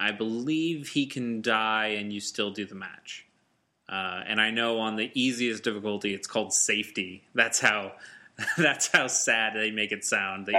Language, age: English, 20-39